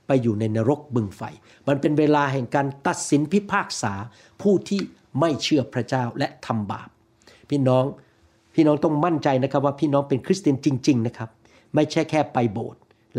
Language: Thai